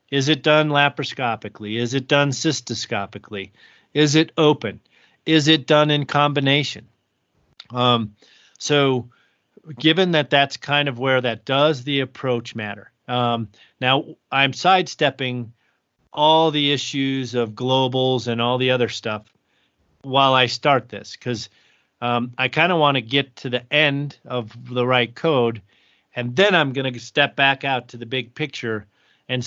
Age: 40-59